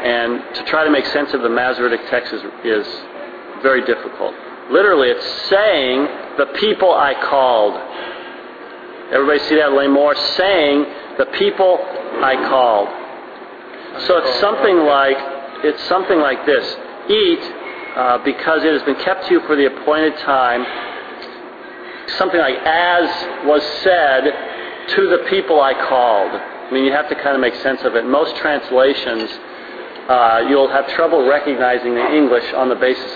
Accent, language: American, English